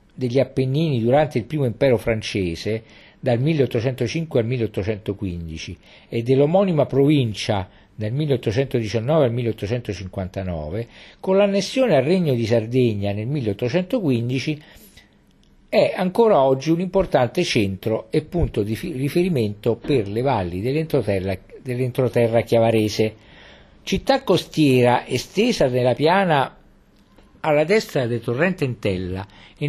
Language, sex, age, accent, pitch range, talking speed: Italian, male, 50-69, native, 110-150 Hz, 105 wpm